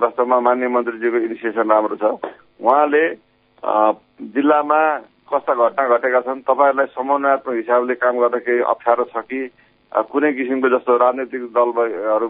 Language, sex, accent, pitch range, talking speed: English, male, Indian, 115-130 Hz, 135 wpm